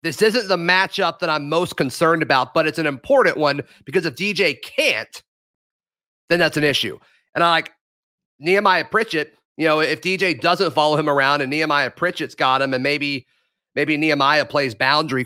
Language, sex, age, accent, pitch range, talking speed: English, male, 30-49, American, 140-175 Hz, 180 wpm